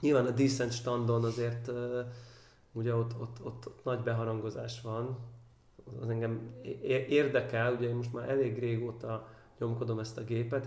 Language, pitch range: Hungarian, 115-135 Hz